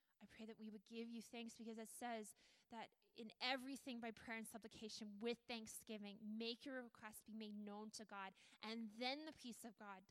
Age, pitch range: 10-29, 215-265 Hz